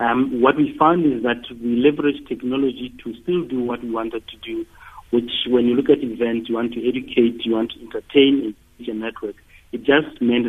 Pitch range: 115-130 Hz